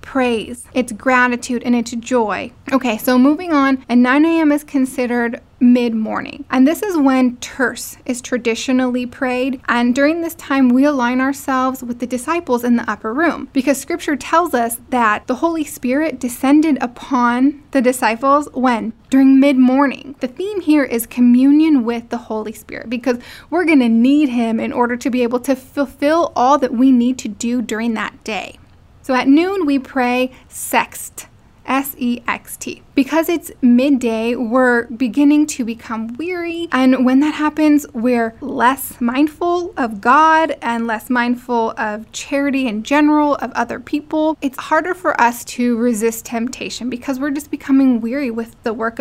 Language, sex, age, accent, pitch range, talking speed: English, female, 10-29, American, 240-285 Hz, 160 wpm